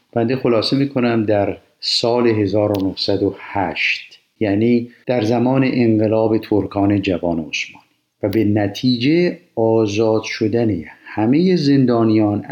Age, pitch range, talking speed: 50-69, 95-120 Hz, 95 wpm